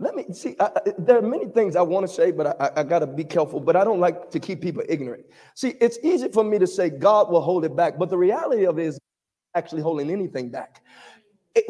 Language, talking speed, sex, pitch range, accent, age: English, 255 wpm, male, 205-320 Hz, American, 30-49